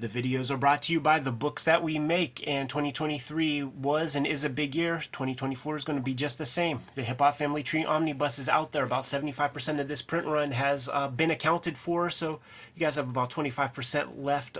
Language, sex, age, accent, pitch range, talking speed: English, male, 30-49, American, 135-155 Hz, 225 wpm